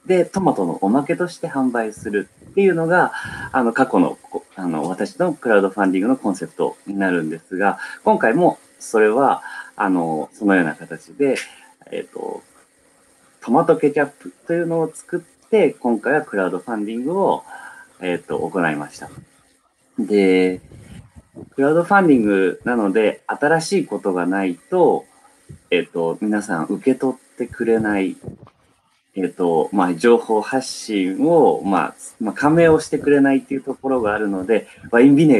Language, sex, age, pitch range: Japanese, male, 30-49, 100-150 Hz